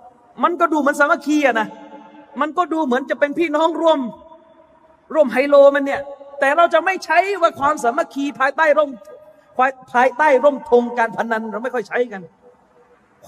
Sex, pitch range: male, 275-330 Hz